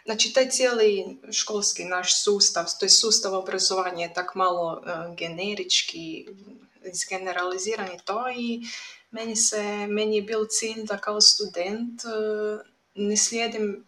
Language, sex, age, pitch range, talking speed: Croatian, female, 20-39, 195-220 Hz, 135 wpm